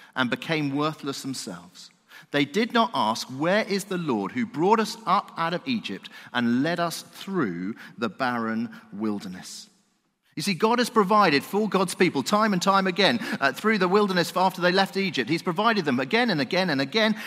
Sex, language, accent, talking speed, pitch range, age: male, English, British, 190 wpm, 145-215 Hz, 40-59